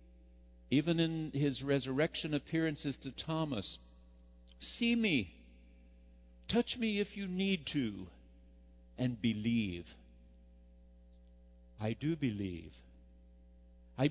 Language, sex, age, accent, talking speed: English, male, 60-79, American, 90 wpm